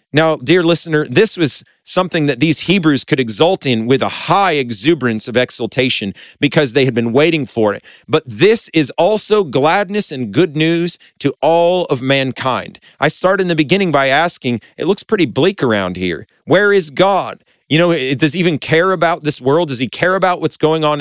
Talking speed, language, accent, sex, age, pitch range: 195 wpm, English, American, male, 40-59, 130-180 Hz